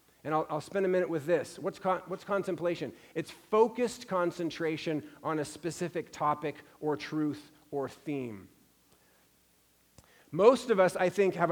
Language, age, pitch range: English, 40-59, 150-180 Hz